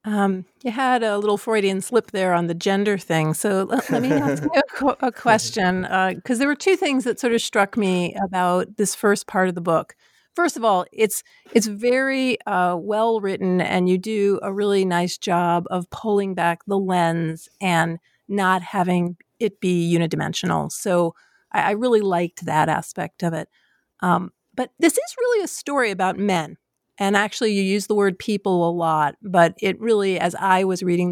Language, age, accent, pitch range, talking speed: English, 40-59, American, 170-210 Hz, 195 wpm